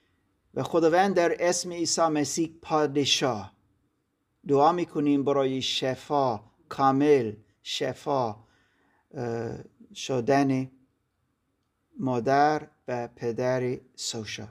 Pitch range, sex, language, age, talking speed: 105-140 Hz, male, Persian, 50-69, 75 wpm